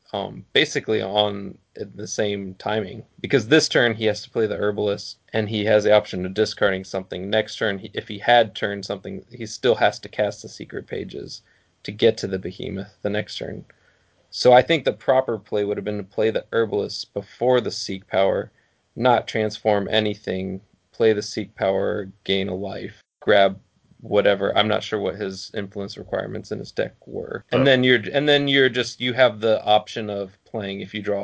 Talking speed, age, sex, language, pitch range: 195 wpm, 20-39, male, English, 100-115 Hz